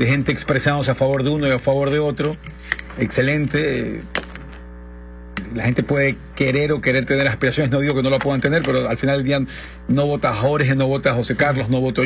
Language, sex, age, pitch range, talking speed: English, male, 50-69, 120-150 Hz, 210 wpm